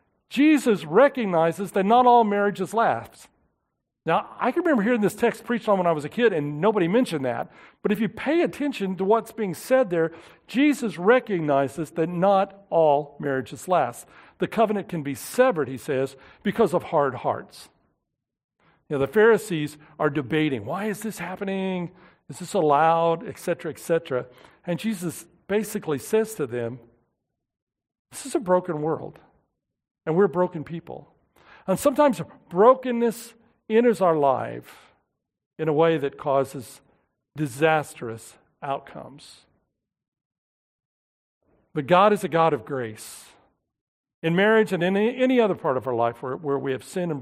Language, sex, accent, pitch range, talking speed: English, male, American, 145-205 Hz, 150 wpm